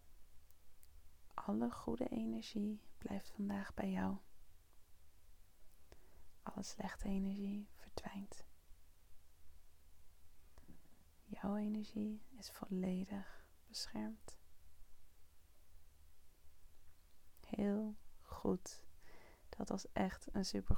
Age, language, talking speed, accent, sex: 30-49, Dutch, 65 wpm, Dutch, female